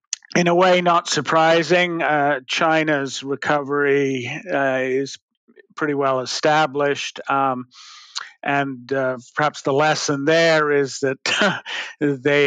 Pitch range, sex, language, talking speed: 130-145 Hz, male, English, 110 wpm